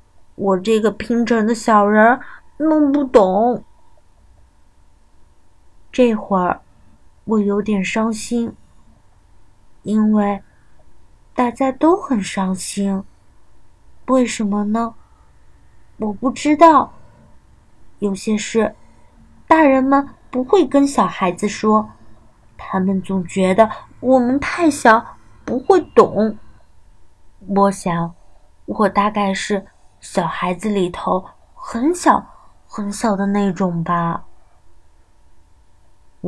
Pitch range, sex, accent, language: 165-255 Hz, female, native, Chinese